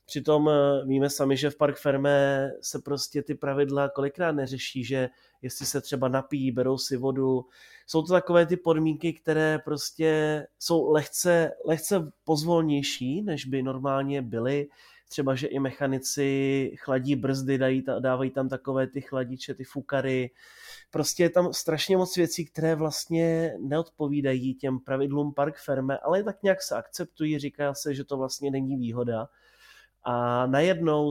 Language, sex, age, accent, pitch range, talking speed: Czech, male, 30-49, native, 130-145 Hz, 145 wpm